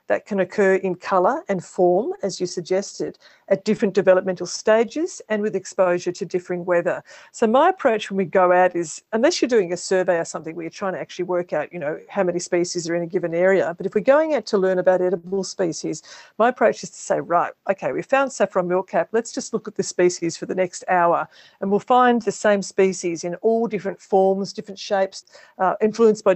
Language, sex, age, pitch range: English, female, 50-69, 185-225 Hz